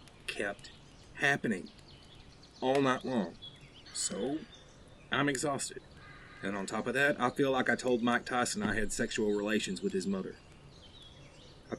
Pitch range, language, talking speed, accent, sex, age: 110-145 Hz, English, 145 wpm, American, male, 30-49